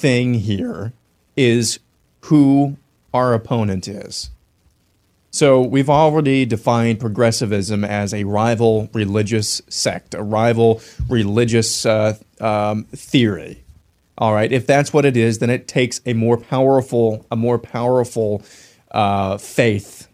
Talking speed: 120 wpm